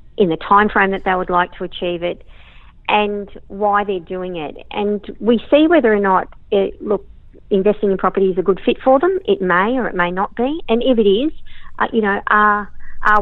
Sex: female